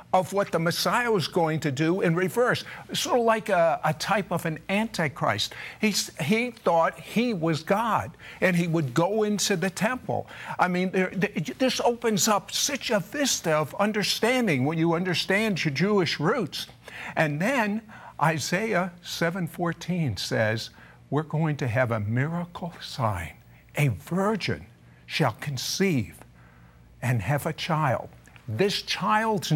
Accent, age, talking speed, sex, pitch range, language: American, 60-79, 145 wpm, male, 145-210 Hz, English